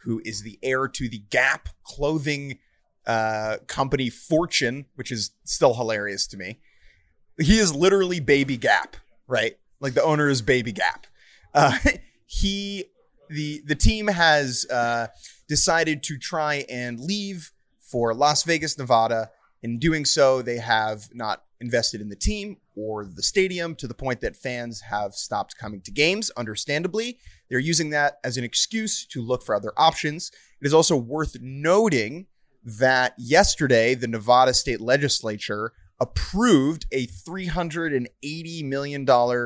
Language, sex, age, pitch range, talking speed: English, male, 30-49, 115-155 Hz, 145 wpm